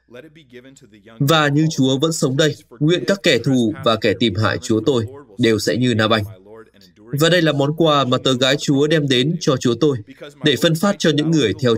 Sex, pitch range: male, 110-155 Hz